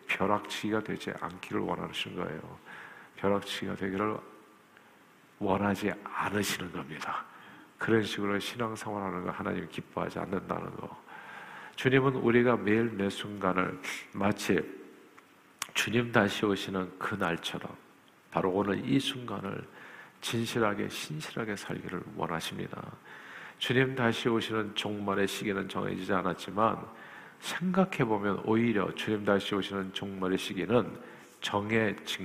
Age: 50-69